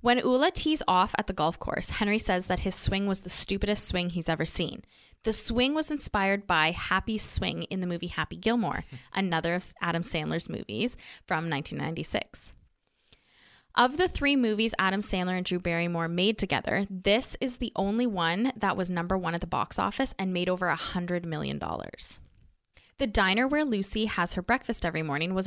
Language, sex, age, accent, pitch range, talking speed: English, female, 20-39, American, 170-220 Hz, 185 wpm